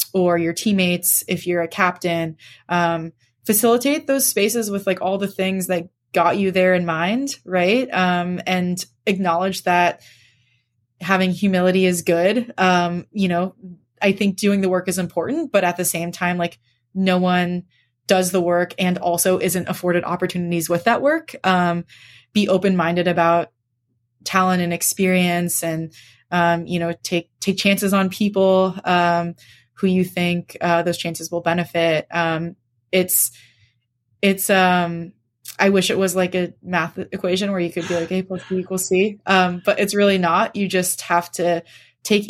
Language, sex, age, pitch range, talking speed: English, female, 20-39, 170-190 Hz, 165 wpm